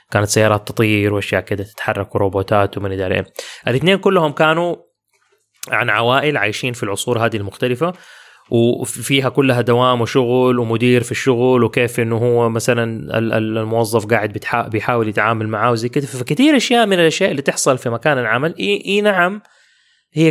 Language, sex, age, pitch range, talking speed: English, male, 20-39, 115-150 Hz, 140 wpm